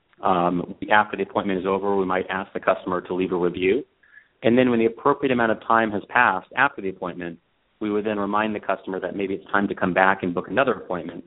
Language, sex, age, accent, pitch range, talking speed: English, male, 30-49, American, 90-100 Hz, 240 wpm